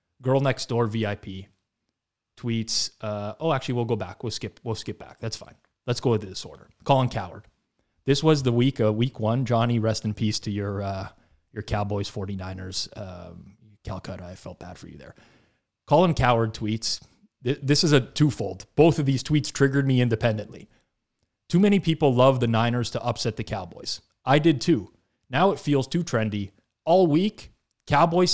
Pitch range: 105-140 Hz